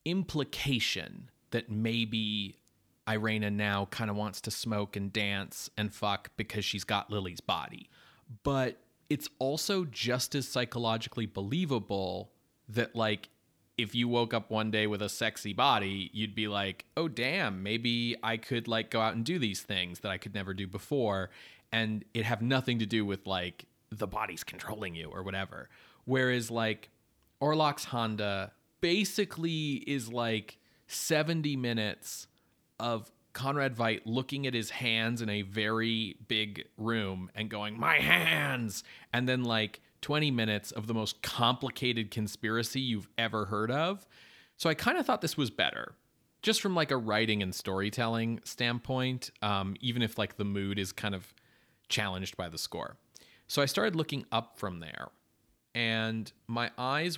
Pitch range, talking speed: 105-125 Hz, 160 wpm